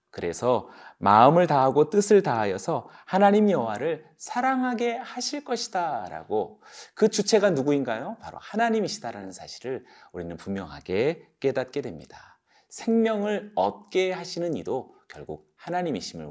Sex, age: male, 40-59